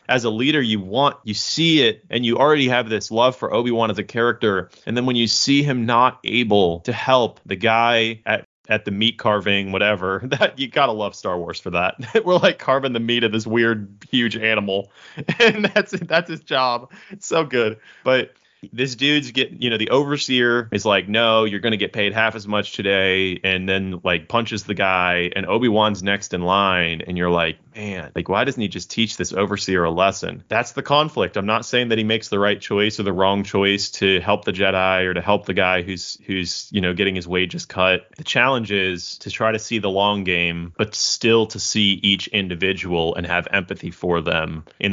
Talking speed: 220 wpm